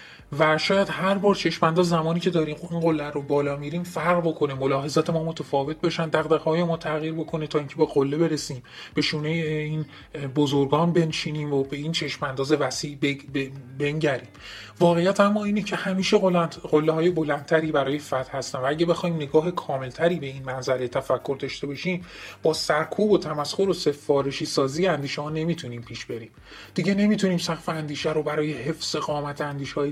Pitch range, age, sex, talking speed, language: 140-165 Hz, 30-49, male, 160 wpm, Persian